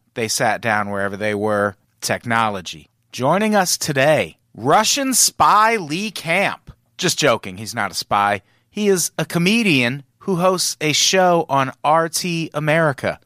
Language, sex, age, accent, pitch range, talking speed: English, male, 30-49, American, 115-150 Hz, 140 wpm